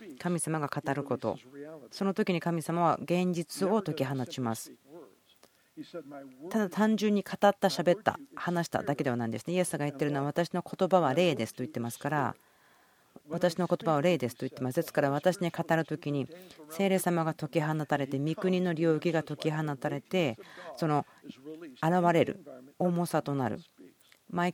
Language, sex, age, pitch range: Japanese, female, 40-59, 145-175 Hz